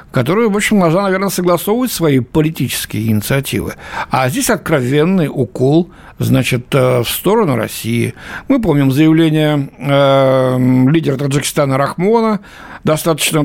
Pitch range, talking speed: 130-185 Hz, 110 wpm